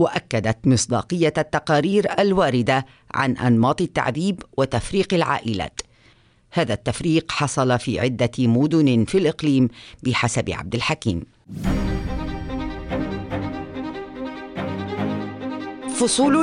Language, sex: Arabic, female